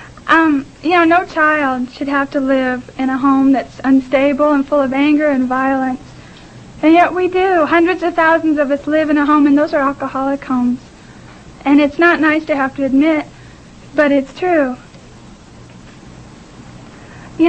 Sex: female